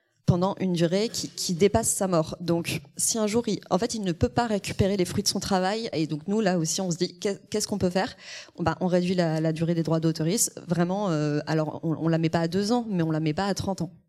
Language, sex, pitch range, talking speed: French, female, 160-185 Hz, 275 wpm